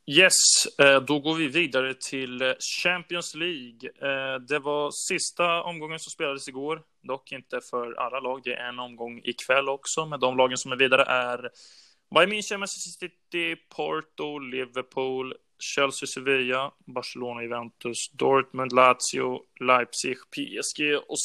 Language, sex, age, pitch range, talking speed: Swedish, male, 20-39, 120-145 Hz, 135 wpm